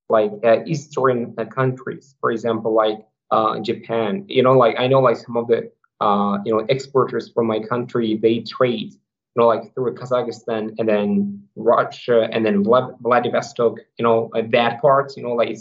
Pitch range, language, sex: 115-140 Hz, English, male